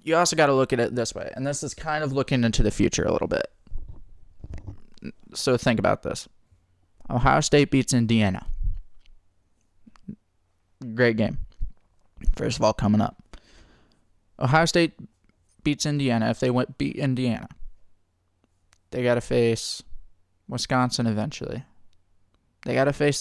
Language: English